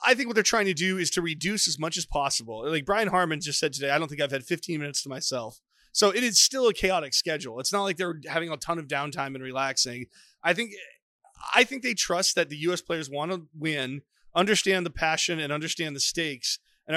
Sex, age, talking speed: male, 30-49, 245 wpm